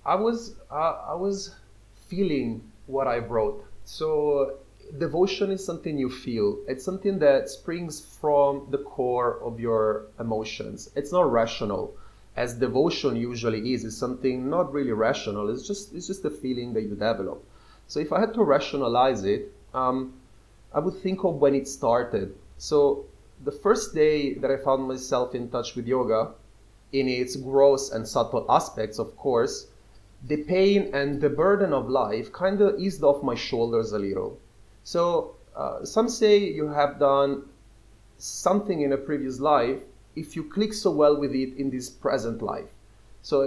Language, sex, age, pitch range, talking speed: Italian, male, 30-49, 120-165 Hz, 165 wpm